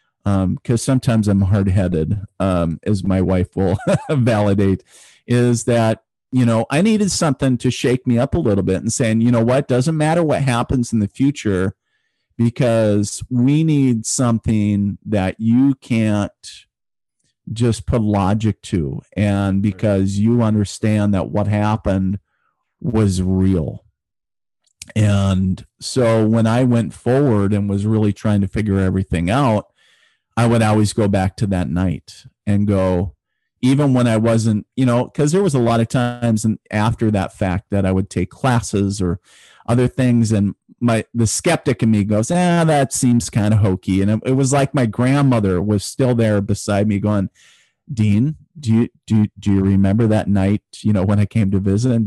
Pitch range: 100-120 Hz